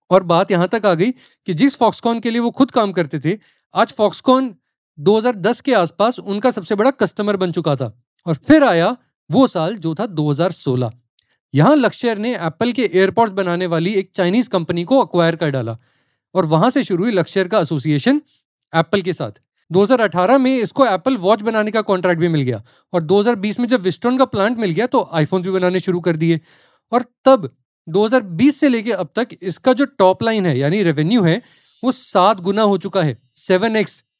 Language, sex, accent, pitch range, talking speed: Hindi, male, native, 175-240 Hz, 200 wpm